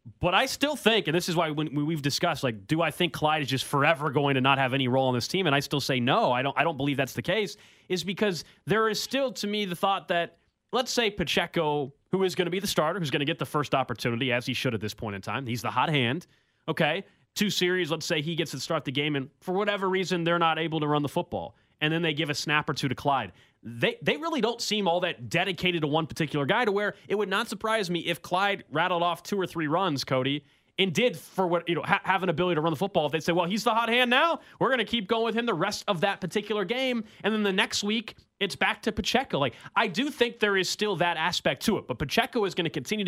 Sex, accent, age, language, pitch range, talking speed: male, American, 30-49, English, 145-200 Hz, 280 wpm